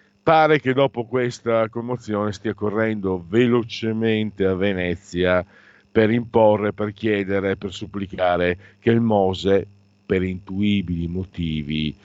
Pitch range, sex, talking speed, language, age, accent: 100-130 Hz, male, 110 wpm, Italian, 50-69, native